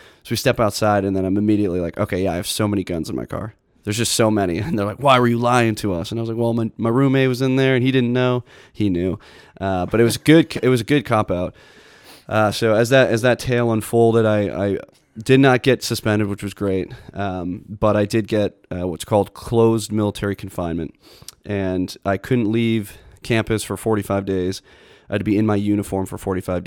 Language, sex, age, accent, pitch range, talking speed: English, male, 20-39, American, 95-115 Hz, 235 wpm